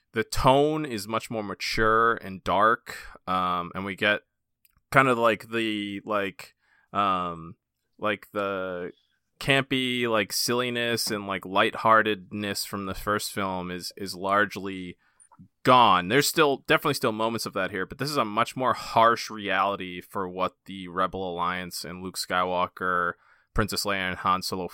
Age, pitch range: 20-39, 95-120 Hz